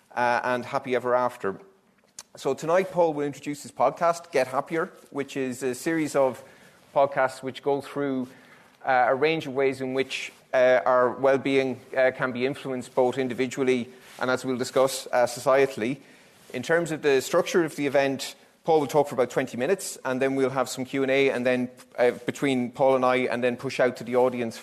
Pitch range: 125-155 Hz